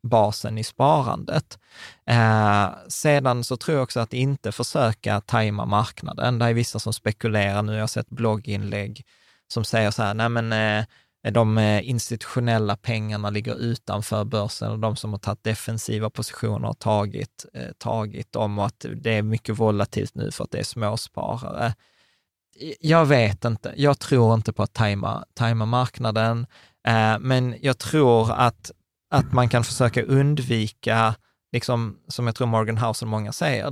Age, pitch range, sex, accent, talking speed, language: 20-39, 110-125 Hz, male, native, 160 wpm, Swedish